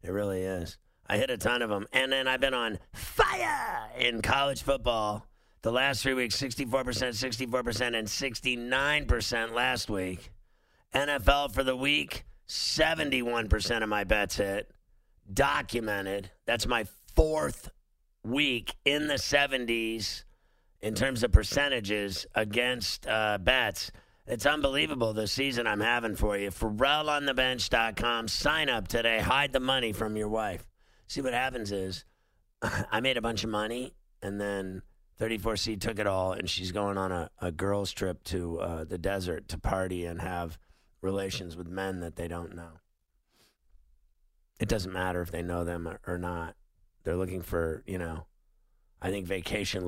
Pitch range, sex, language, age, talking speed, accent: 90-120 Hz, male, English, 50-69, 150 wpm, American